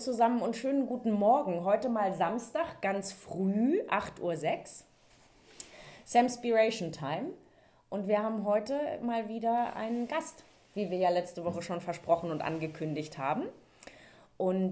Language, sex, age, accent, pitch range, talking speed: German, female, 30-49, German, 175-225 Hz, 135 wpm